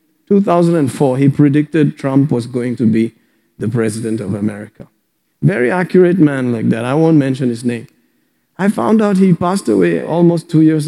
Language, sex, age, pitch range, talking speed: English, male, 50-69, 125-155 Hz, 170 wpm